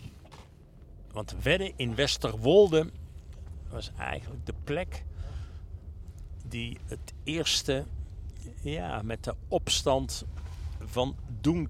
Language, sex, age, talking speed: Dutch, male, 60-79, 80 wpm